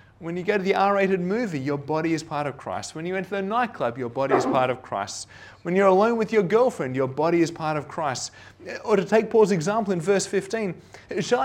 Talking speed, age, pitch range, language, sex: 235 wpm, 30-49, 110-185 Hz, English, male